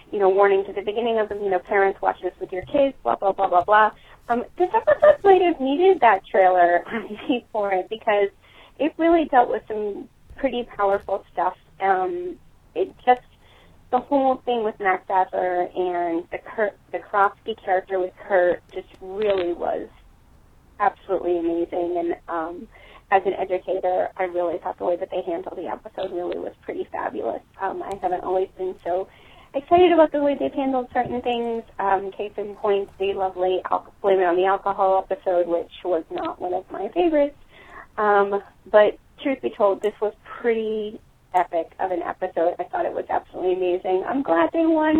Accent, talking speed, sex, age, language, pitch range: American, 180 wpm, female, 30-49, English, 185-250 Hz